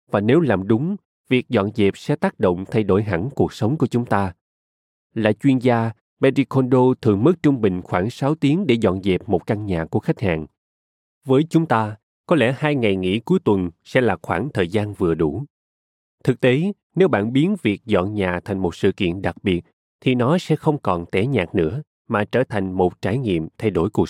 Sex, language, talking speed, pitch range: male, Vietnamese, 215 wpm, 95-130 Hz